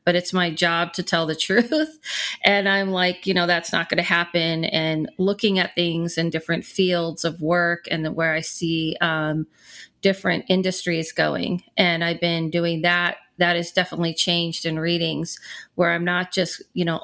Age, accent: 40-59, American